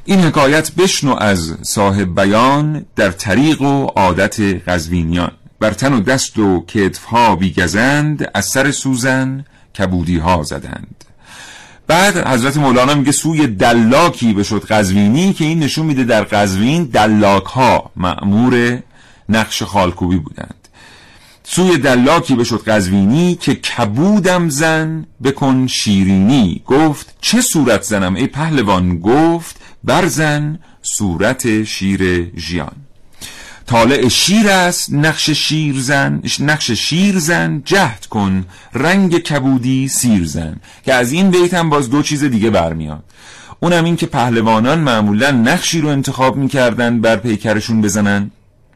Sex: male